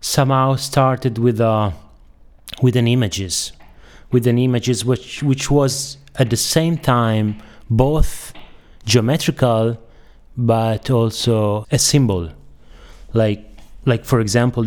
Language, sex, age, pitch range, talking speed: English, male, 30-49, 100-125 Hz, 110 wpm